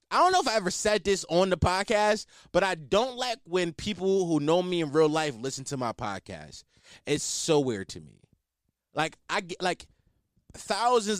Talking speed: 195 wpm